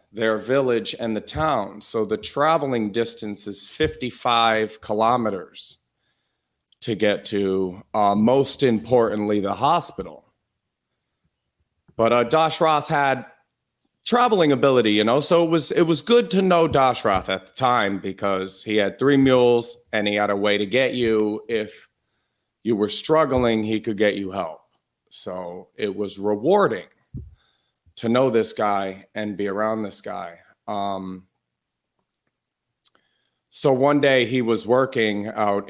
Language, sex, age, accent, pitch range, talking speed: English, male, 40-59, American, 100-125 Hz, 140 wpm